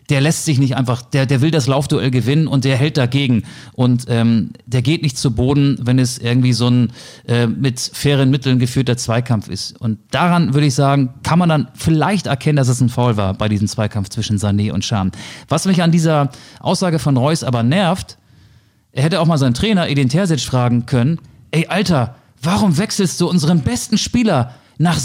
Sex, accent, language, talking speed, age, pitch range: male, German, German, 200 wpm, 40-59, 125-160 Hz